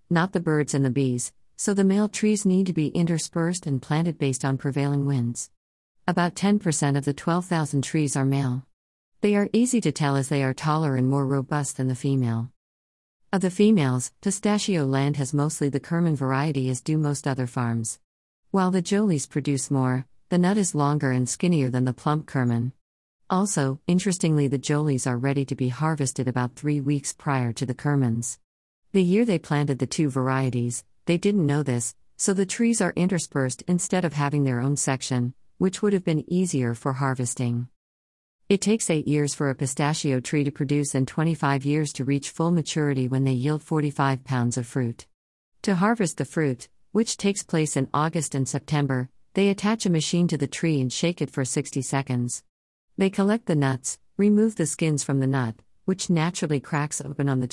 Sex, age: female, 50-69